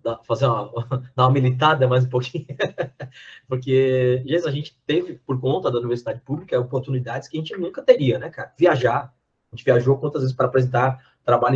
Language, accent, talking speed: Portuguese, Brazilian, 175 wpm